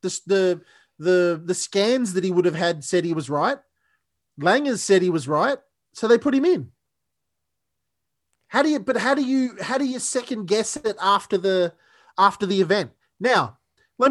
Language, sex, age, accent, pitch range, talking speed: English, male, 30-49, Australian, 175-235 Hz, 185 wpm